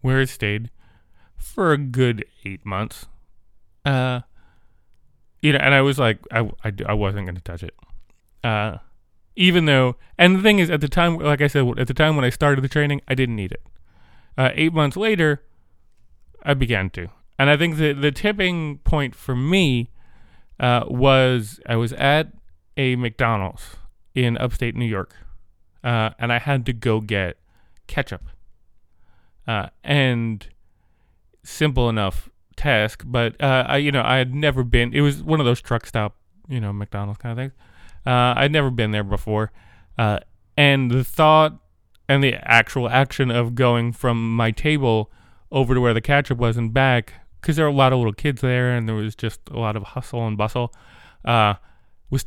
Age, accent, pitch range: 30-49, American, 105-140 Hz